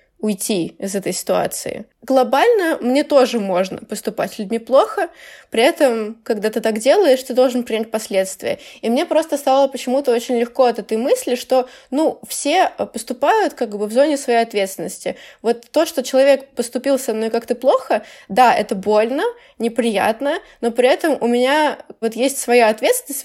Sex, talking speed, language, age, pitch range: female, 165 wpm, Russian, 20-39, 215-270 Hz